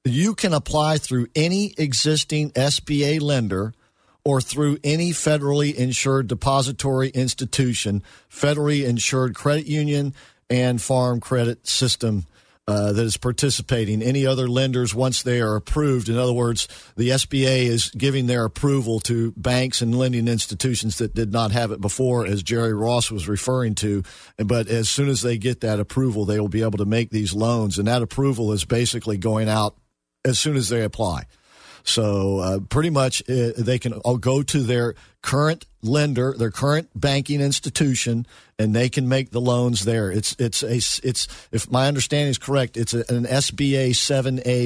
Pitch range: 110-135 Hz